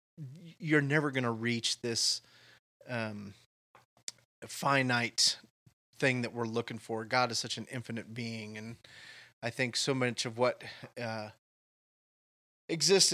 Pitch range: 110-130 Hz